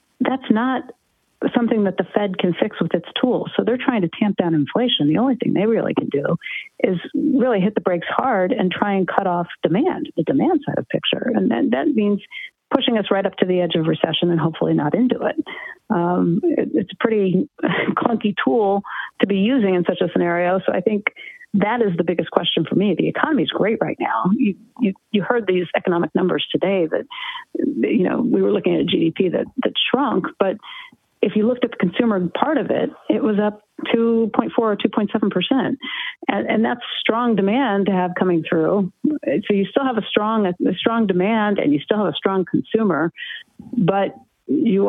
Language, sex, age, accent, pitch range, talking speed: English, female, 50-69, American, 190-255 Hz, 205 wpm